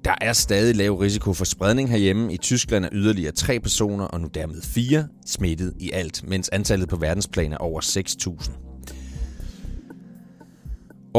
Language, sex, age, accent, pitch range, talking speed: Danish, male, 30-49, native, 85-115 Hz, 150 wpm